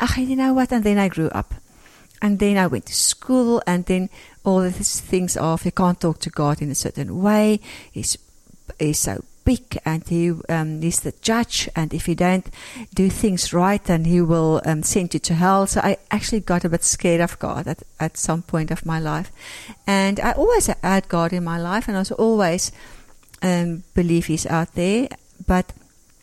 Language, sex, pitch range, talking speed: English, female, 165-195 Hz, 205 wpm